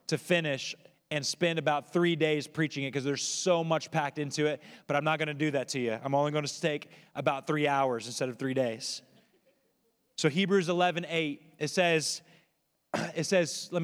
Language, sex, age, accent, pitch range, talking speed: English, male, 30-49, American, 145-180 Hz, 195 wpm